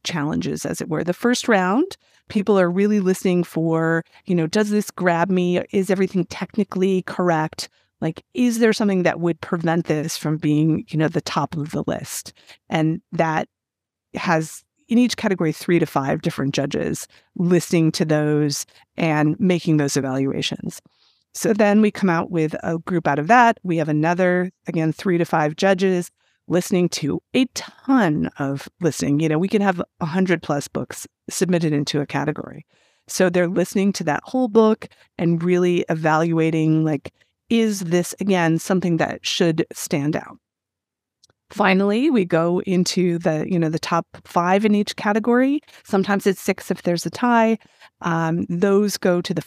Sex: female